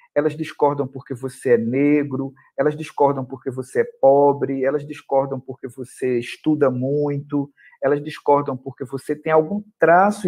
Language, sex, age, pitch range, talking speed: Portuguese, male, 50-69, 135-175 Hz, 145 wpm